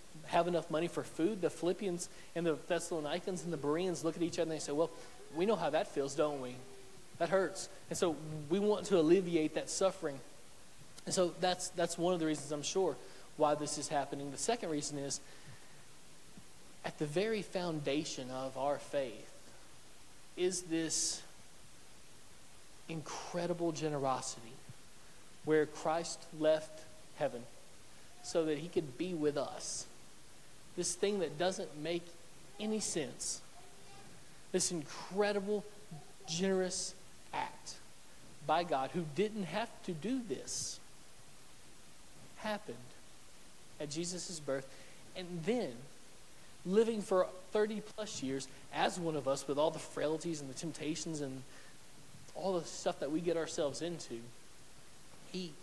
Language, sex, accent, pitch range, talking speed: English, male, American, 150-180 Hz, 140 wpm